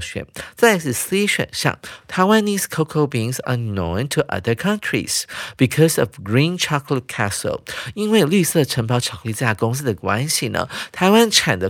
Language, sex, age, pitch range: Chinese, male, 50-69, 120-175 Hz